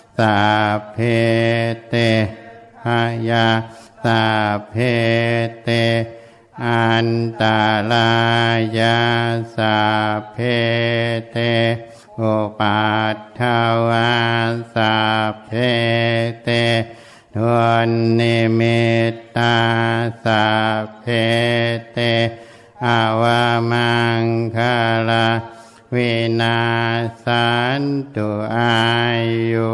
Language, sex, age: Thai, male, 60-79